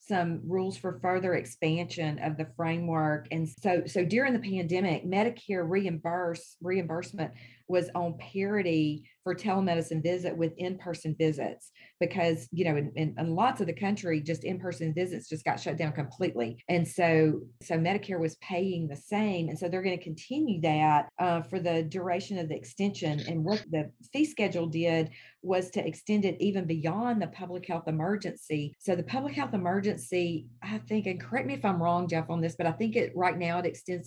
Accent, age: American, 40-59